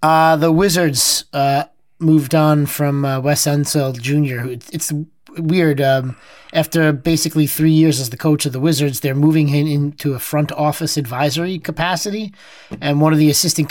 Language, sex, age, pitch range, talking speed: English, male, 30-49, 140-160 Hz, 175 wpm